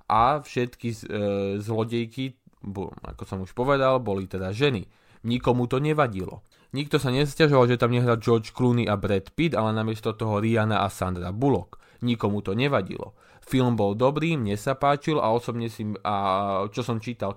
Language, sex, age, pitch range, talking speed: English, male, 20-39, 105-130 Hz, 160 wpm